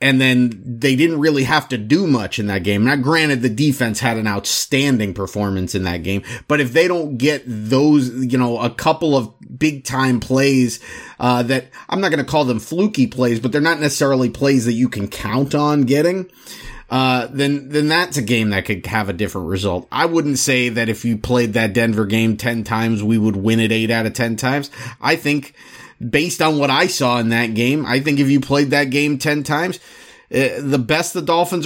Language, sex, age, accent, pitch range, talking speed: English, male, 30-49, American, 115-150 Hz, 215 wpm